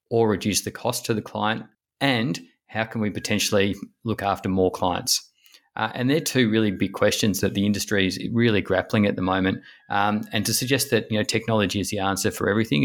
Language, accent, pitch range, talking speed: English, Australian, 100-115 Hz, 210 wpm